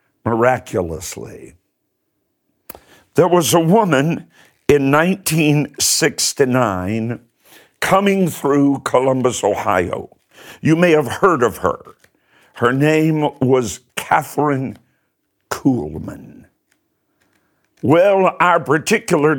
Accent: American